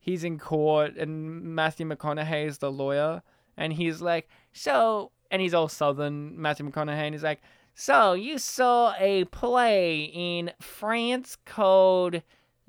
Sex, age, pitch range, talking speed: male, 20-39, 160-210 Hz, 140 wpm